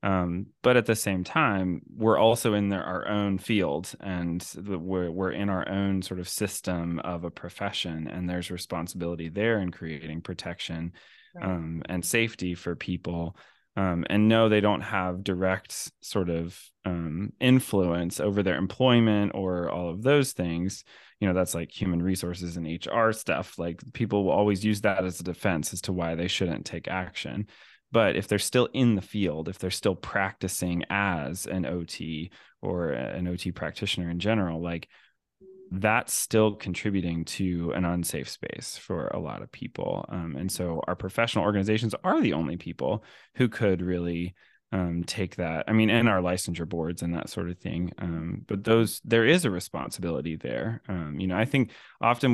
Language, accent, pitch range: English, American, 85-105 Hz